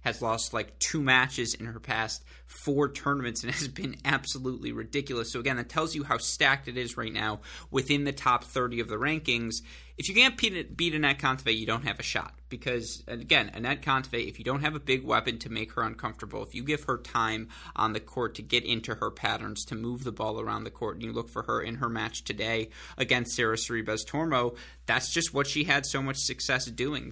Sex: male